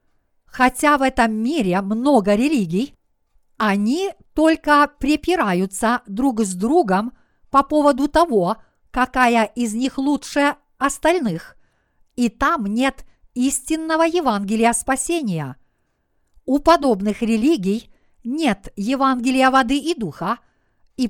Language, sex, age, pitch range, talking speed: Russian, female, 50-69, 225-285 Hz, 100 wpm